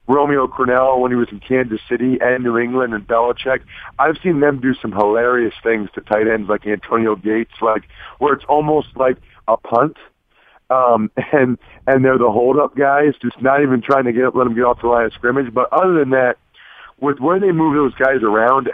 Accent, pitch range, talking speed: American, 115-135 Hz, 210 wpm